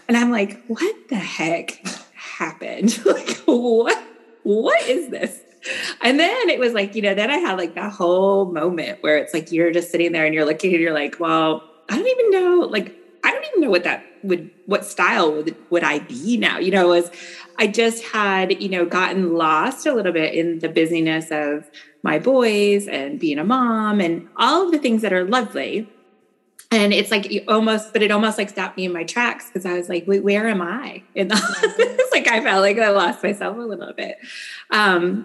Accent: American